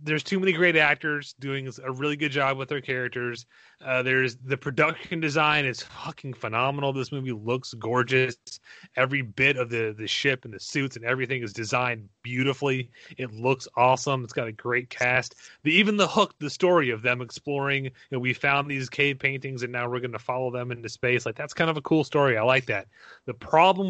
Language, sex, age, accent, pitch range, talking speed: English, male, 30-49, American, 125-150 Hz, 210 wpm